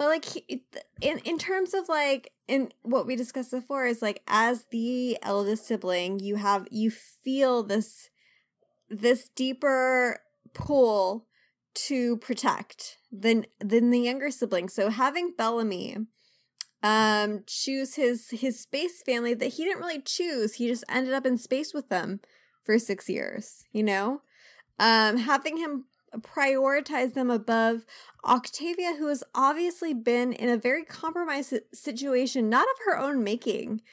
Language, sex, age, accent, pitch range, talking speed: English, female, 20-39, American, 225-290 Hz, 145 wpm